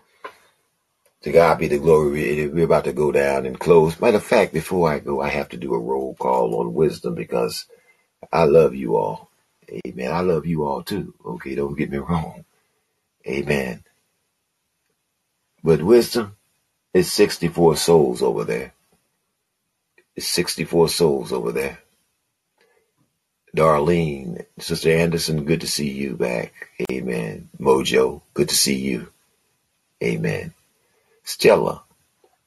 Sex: male